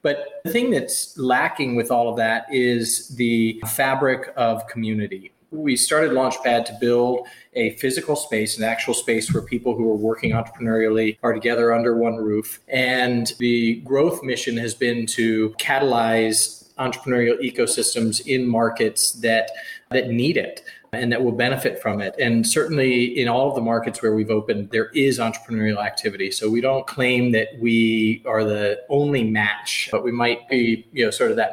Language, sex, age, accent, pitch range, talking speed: English, male, 30-49, American, 110-130 Hz, 175 wpm